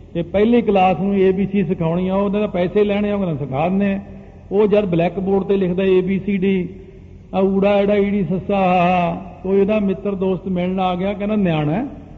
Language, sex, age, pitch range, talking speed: Punjabi, male, 50-69, 180-215 Hz, 190 wpm